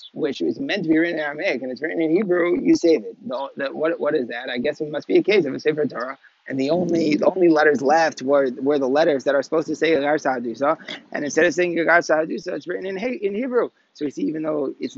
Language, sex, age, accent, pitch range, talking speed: English, male, 30-49, American, 135-175 Hz, 265 wpm